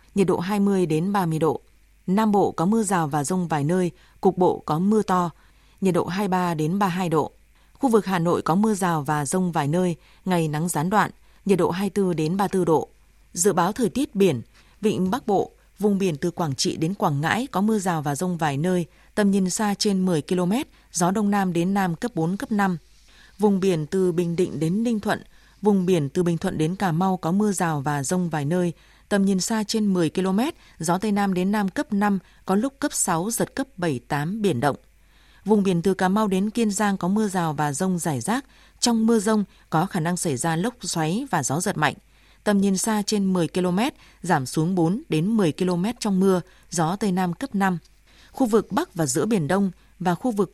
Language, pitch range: Vietnamese, 170-205 Hz